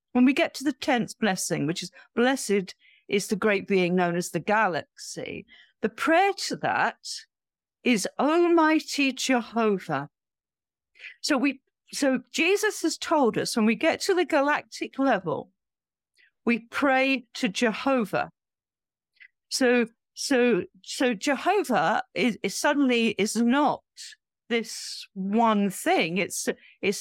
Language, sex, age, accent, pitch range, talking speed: English, female, 50-69, British, 220-315 Hz, 130 wpm